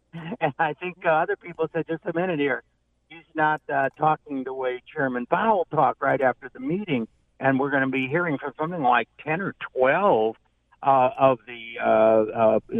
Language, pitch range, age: English, 120-155 Hz, 60-79